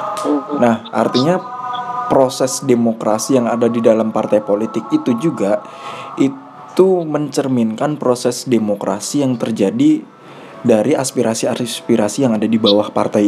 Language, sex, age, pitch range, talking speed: Indonesian, male, 20-39, 115-140 Hz, 115 wpm